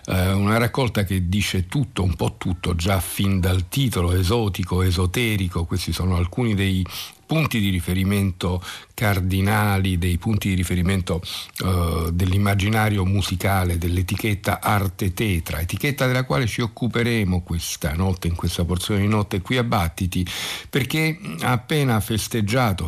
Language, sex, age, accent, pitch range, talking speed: Italian, male, 50-69, native, 90-110 Hz, 135 wpm